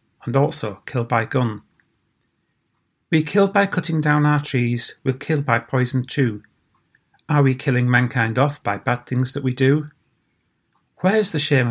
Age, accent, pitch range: 40-59, British, 120-150 Hz